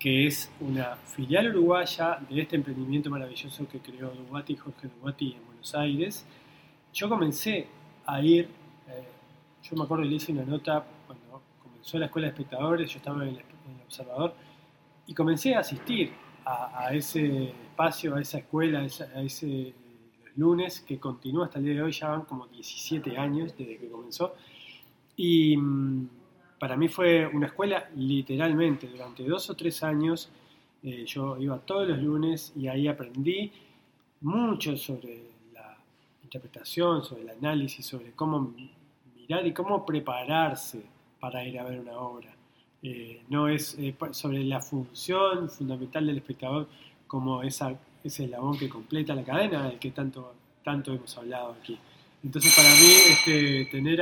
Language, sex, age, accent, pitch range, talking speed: Spanish, male, 20-39, Argentinian, 130-155 Hz, 160 wpm